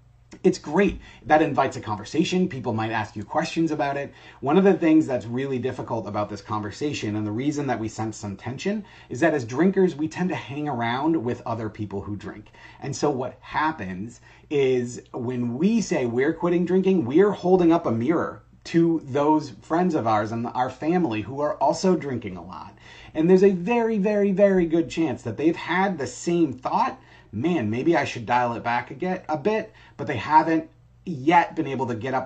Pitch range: 115-165 Hz